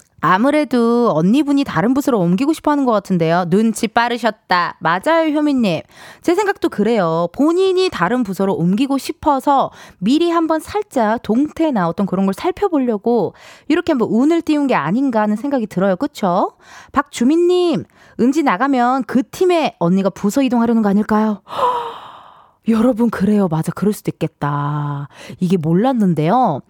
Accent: native